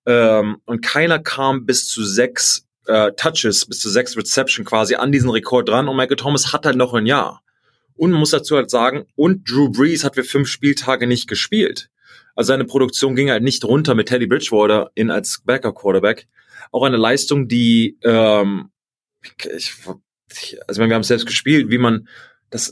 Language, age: German, 30-49